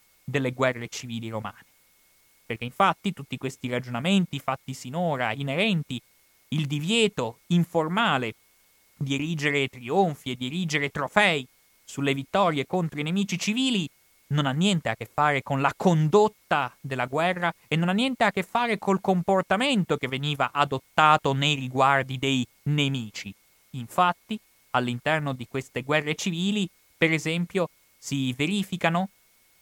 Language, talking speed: Italian, 130 wpm